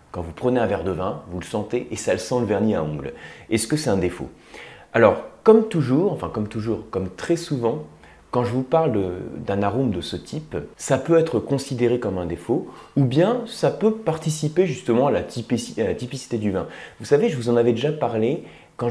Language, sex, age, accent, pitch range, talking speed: French, male, 30-49, French, 100-155 Hz, 220 wpm